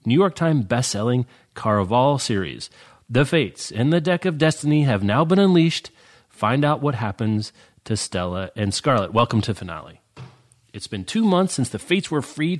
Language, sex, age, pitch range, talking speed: English, male, 30-49, 100-145 Hz, 175 wpm